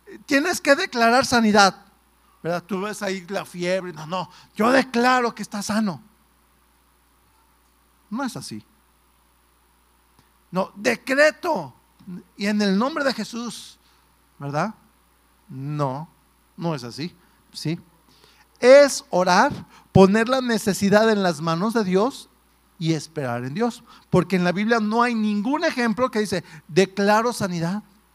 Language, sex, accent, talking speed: Spanish, male, Mexican, 130 wpm